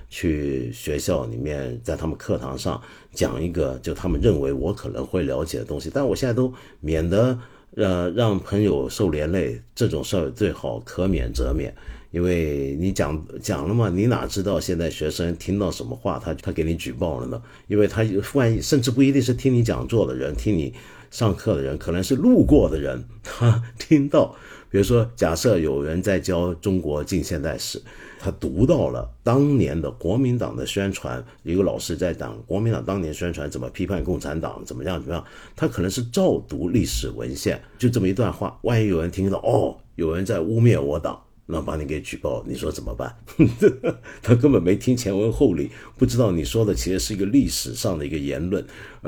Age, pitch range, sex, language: 50-69, 80-115 Hz, male, Chinese